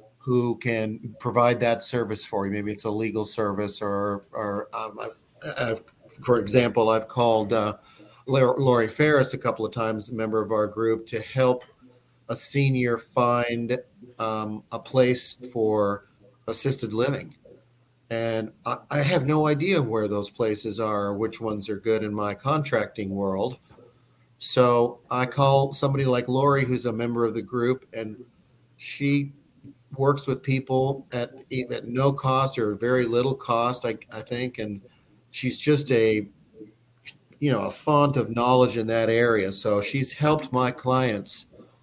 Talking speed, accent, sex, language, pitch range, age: 150 wpm, American, male, English, 110-130 Hz, 40-59